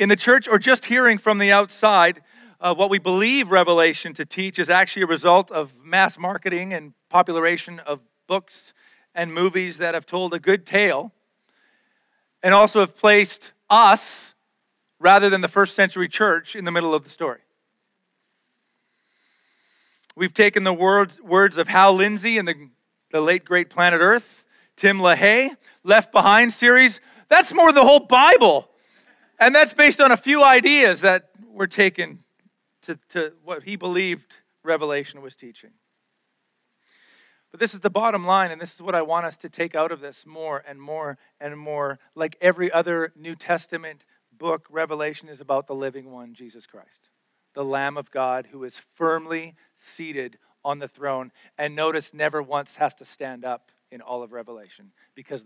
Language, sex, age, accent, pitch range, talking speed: English, male, 40-59, American, 150-200 Hz, 170 wpm